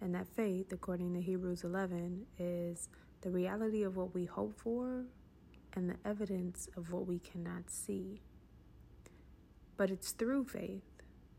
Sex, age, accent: female, 30-49, American